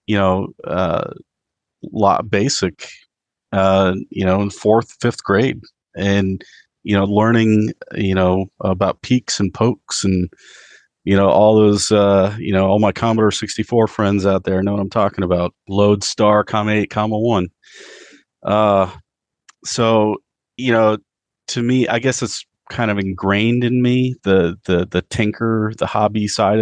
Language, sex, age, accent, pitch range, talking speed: English, male, 40-59, American, 95-110 Hz, 160 wpm